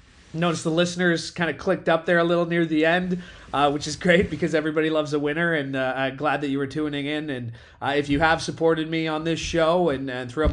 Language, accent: English, American